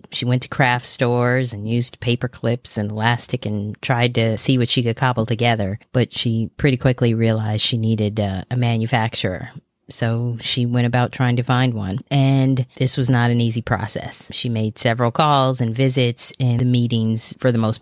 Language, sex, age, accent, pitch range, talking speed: English, female, 30-49, American, 115-130 Hz, 190 wpm